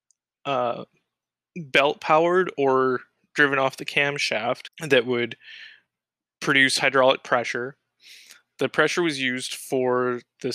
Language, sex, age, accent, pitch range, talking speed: English, male, 20-39, American, 120-140 Hz, 100 wpm